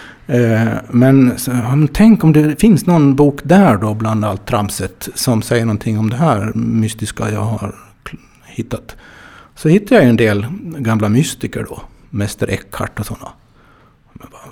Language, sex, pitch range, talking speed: Swedish, male, 110-150 Hz, 150 wpm